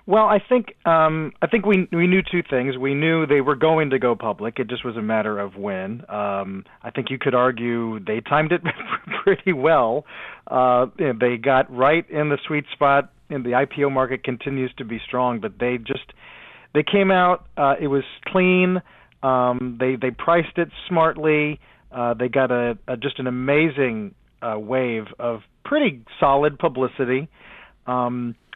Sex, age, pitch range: male, 40-59, 125-165 Hz